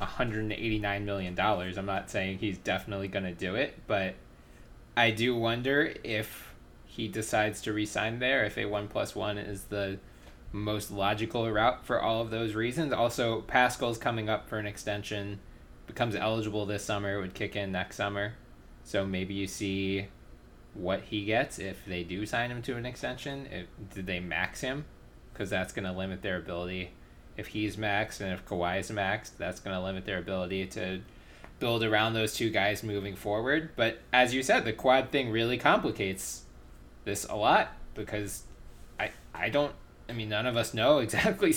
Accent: American